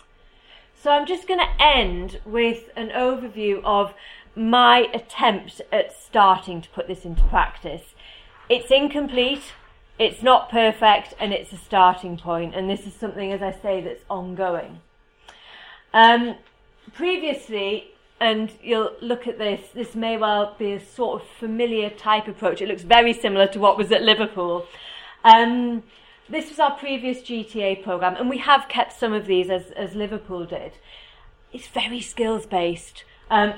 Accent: British